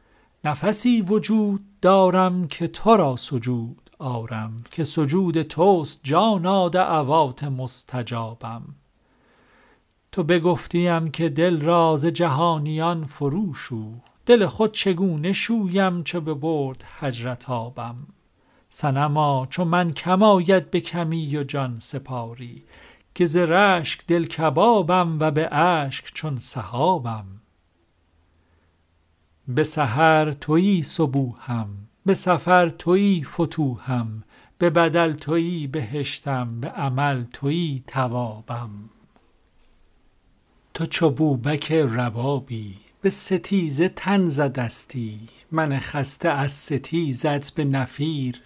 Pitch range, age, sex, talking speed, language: 125-170 Hz, 50-69, male, 100 wpm, Persian